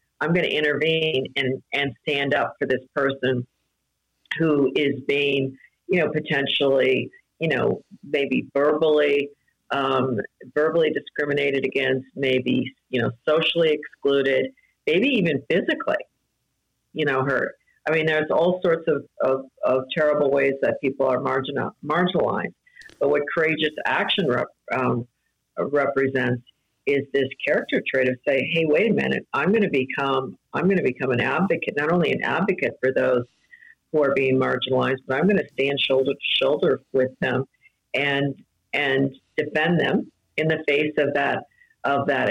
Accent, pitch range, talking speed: American, 135-155 Hz, 150 wpm